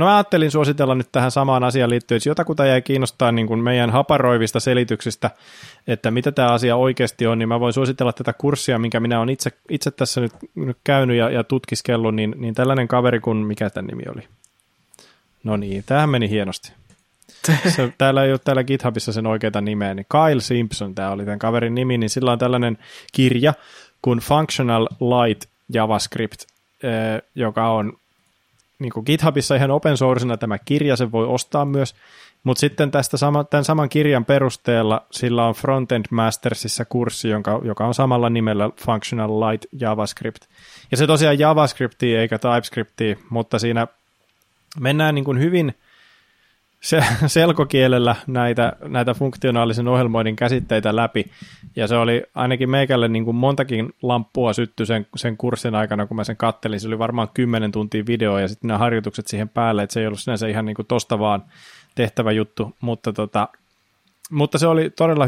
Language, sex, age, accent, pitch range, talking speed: Finnish, male, 20-39, native, 110-135 Hz, 170 wpm